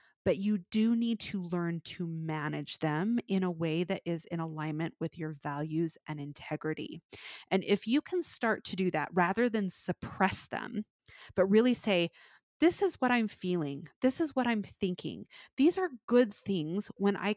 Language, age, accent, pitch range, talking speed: English, 20-39, American, 165-225 Hz, 180 wpm